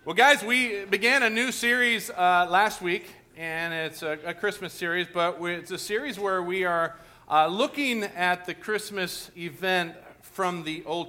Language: English